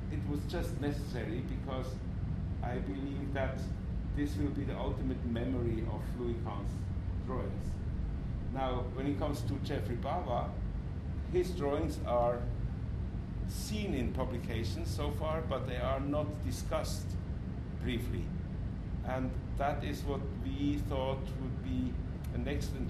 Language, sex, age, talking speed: English, male, 60-79, 130 wpm